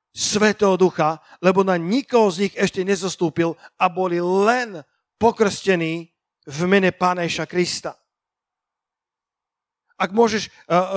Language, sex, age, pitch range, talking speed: Slovak, male, 50-69, 180-220 Hz, 110 wpm